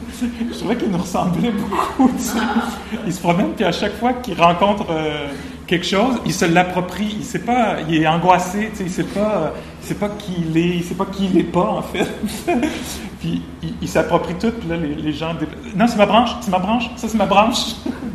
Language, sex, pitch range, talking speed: English, male, 145-195 Hz, 220 wpm